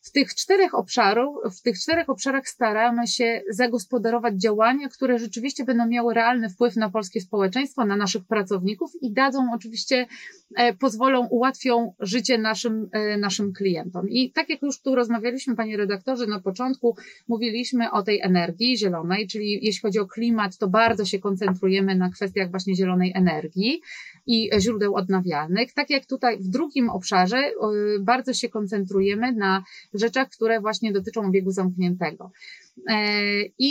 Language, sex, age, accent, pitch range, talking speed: Polish, female, 30-49, native, 195-240 Hz, 145 wpm